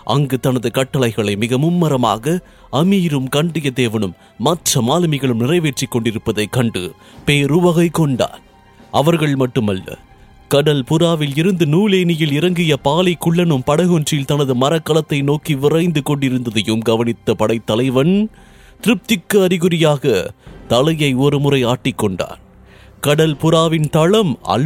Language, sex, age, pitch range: English, male, 30-49, 130-170 Hz